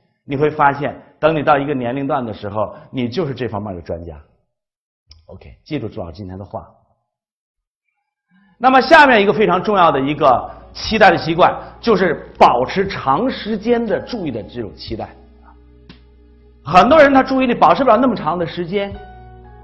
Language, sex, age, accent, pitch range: Chinese, male, 50-69, native, 135-220 Hz